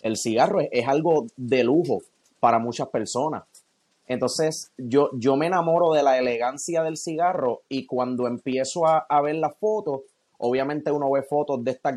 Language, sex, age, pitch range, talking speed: English, male, 30-49, 130-160 Hz, 170 wpm